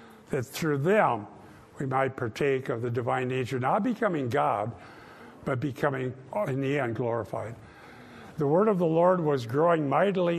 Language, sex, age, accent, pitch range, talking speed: English, male, 60-79, American, 130-175 Hz, 155 wpm